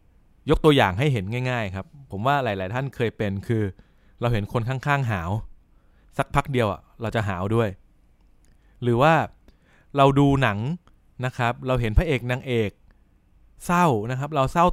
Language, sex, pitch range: Thai, male, 100-135 Hz